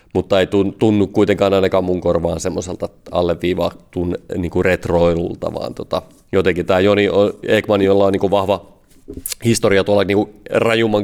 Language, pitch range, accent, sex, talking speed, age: Finnish, 90-100 Hz, native, male, 140 wpm, 30-49